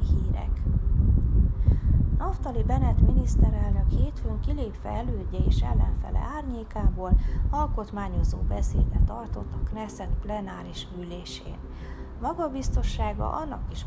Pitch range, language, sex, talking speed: 70-95 Hz, Hungarian, female, 90 wpm